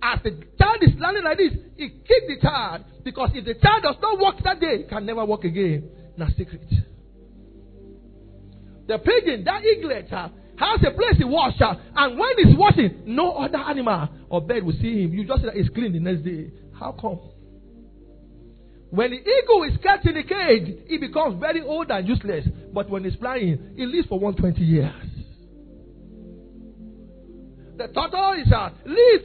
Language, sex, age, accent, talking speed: English, male, 50-69, Nigerian, 175 wpm